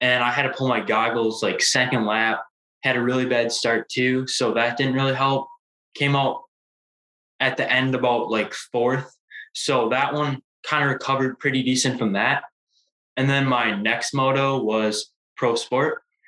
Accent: American